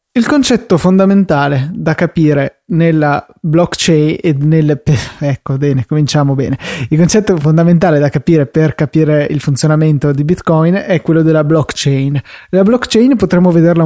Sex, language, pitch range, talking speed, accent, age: male, Italian, 150-180 Hz, 140 wpm, native, 20-39